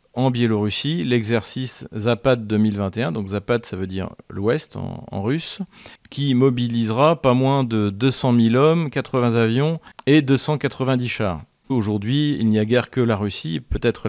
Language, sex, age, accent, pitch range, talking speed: French, male, 40-59, French, 105-130 Hz, 155 wpm